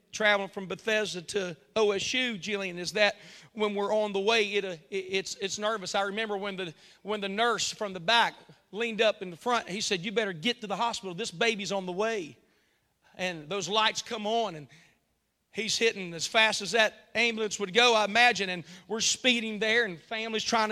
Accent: American